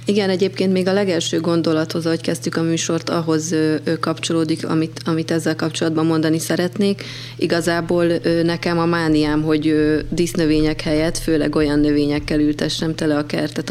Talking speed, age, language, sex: 140 wpm, 30-49, Hungarian, female